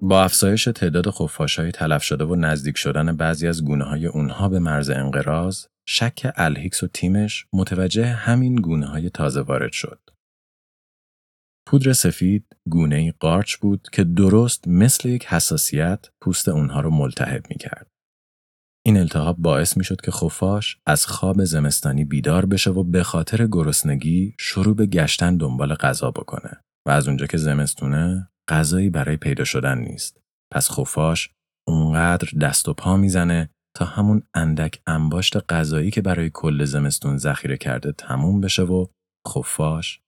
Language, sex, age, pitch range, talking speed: Persian, male, 40-59, 75-95 Hz, 150 wpm